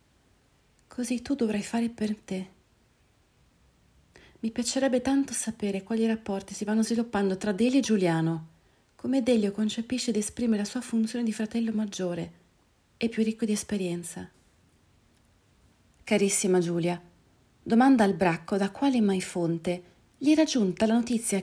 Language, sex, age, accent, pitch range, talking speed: Italian, female, 40-59, native, 185-250 Hz, 135 wpm